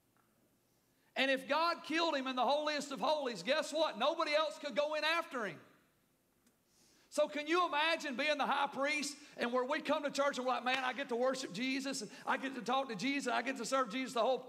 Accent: American